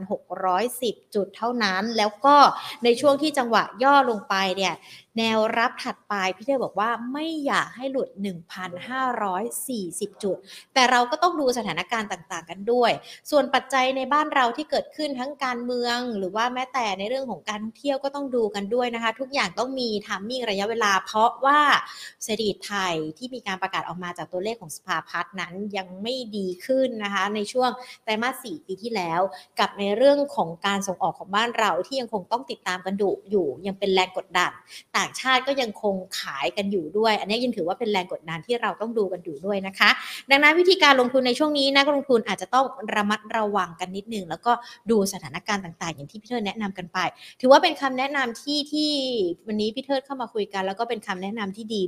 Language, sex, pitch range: Thai, female, 200-260 Hz